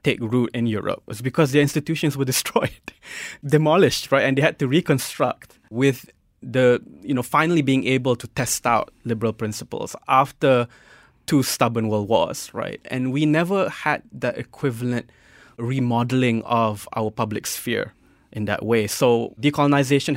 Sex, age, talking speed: male, 20-39, 150 wpm